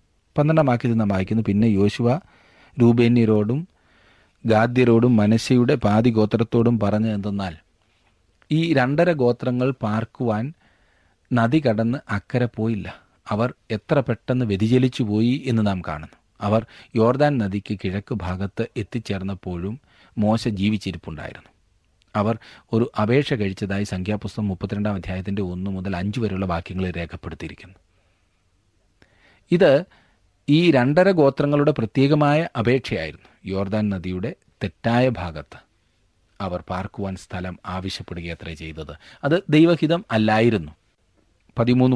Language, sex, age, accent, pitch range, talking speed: Malayalam, male, 40-59, native, 95-120 Hz, 100 wpm